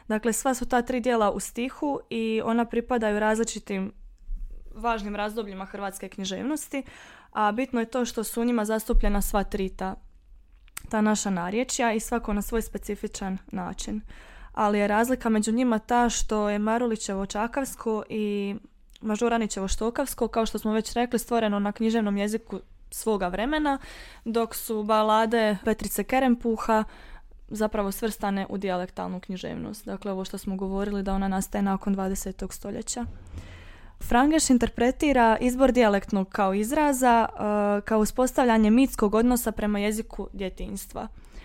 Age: 20-39